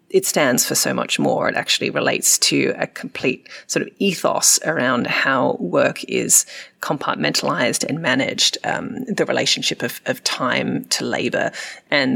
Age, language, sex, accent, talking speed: 30-49, English, female, Australian, 155 wpm